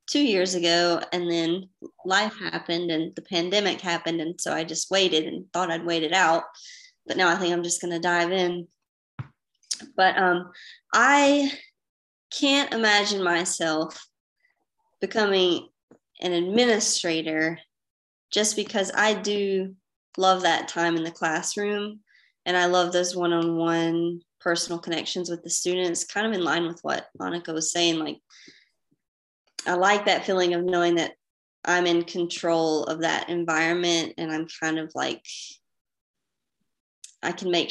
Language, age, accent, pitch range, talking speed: English, 20-39, American, 170-200 Hz, 150 wpm